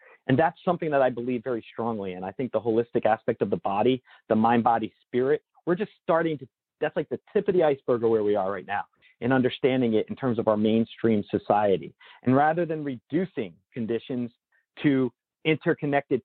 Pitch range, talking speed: 115-150 Hz, 200 wpm